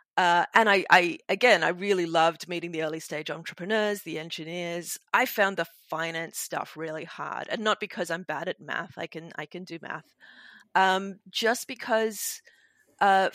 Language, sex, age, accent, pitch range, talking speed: English, female, 30-49, Australian, 165-195 Hz, 175 wpm